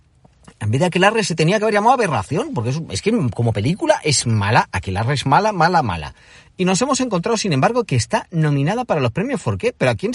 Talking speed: 235 wpm